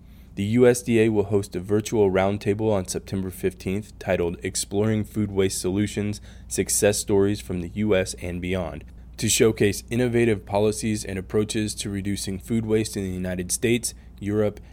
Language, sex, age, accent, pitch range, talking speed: English, male, 20-39, American, 95-110 Hz, 150 wpm